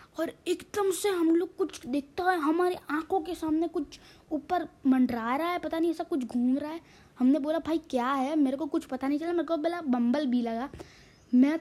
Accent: Indian